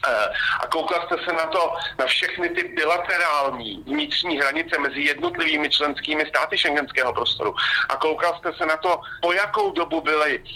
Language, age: Slovak, 50-69